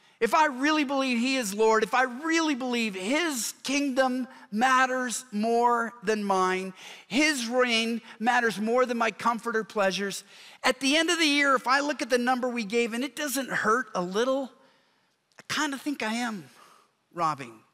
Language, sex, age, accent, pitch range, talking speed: English, male, 50-69, American, 215-280 Hz, 180 wpm